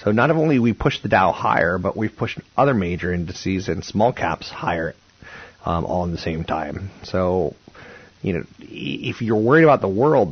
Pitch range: 95-125 Hz